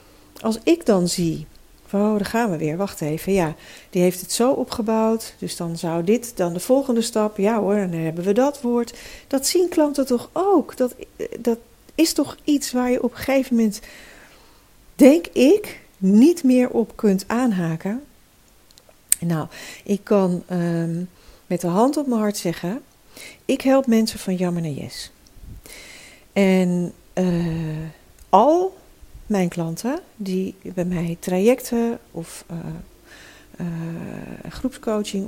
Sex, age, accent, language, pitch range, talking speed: female, 50-69, Dutch, Dutch, 170-235 Hz, 150 wpm